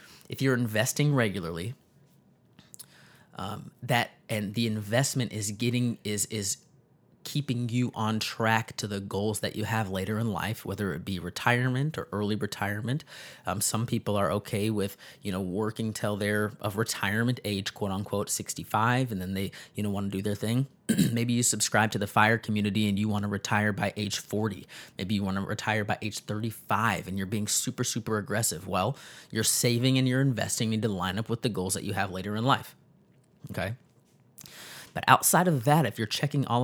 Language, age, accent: English, 30-49, American